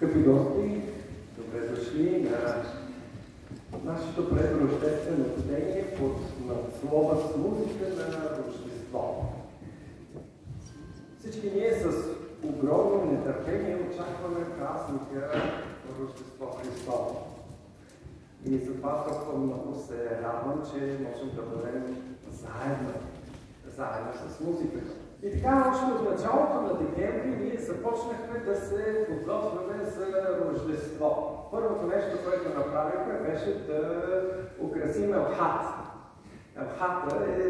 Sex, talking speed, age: male, 100 wpm, 50-69